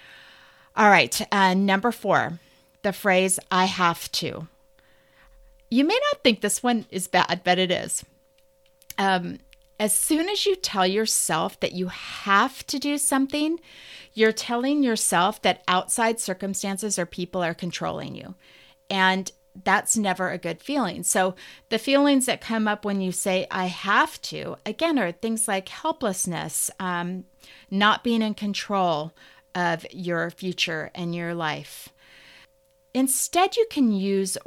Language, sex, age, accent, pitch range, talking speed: English, female, 30-49, American, 180-250 Hz, 145 wpm